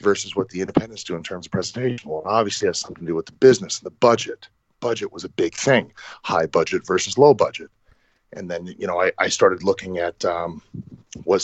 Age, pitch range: 40-59, 95-125 Hz